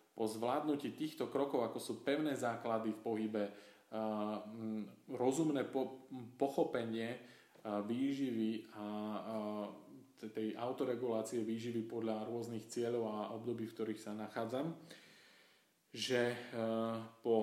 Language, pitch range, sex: Slovak, 110-135 Hz, male